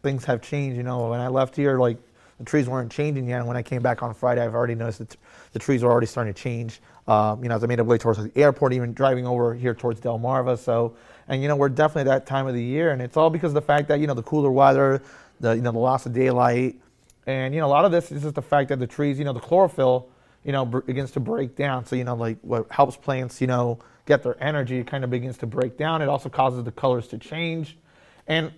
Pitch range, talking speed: 125-145 Hz, 280 wpm